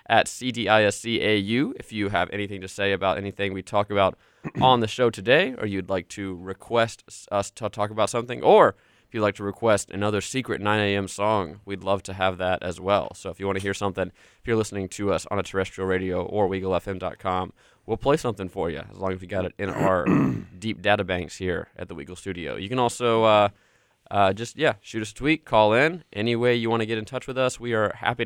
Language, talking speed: English, 235 wpm